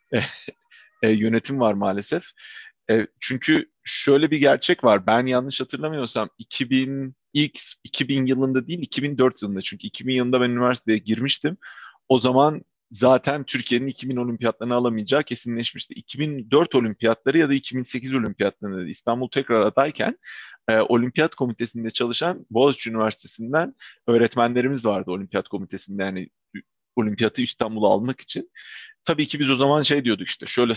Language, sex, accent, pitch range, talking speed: Turkish, male, native, 115-145 Hz, 130 wpm